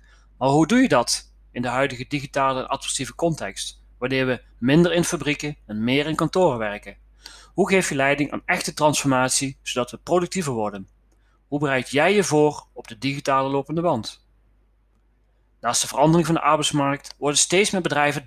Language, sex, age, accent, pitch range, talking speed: Dutch, male, 30-49, Dutch, 120-155 Hz, 175 wpm